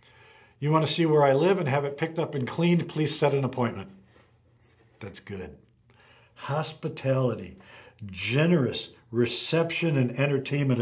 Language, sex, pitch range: English, male, 120-155 Hz